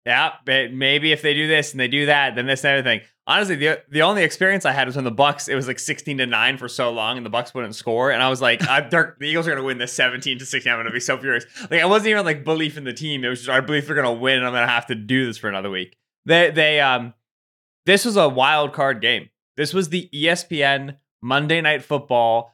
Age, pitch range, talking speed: 20-39, 135-215 Hz, 280 wpm